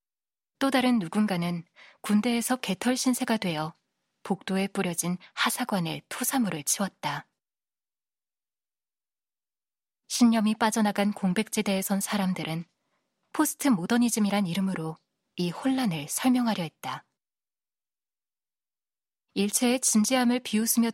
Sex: female